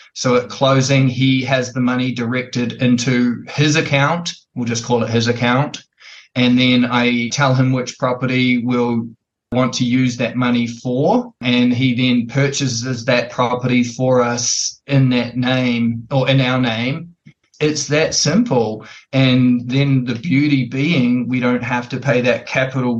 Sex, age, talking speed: male, 20-39, 160 wpm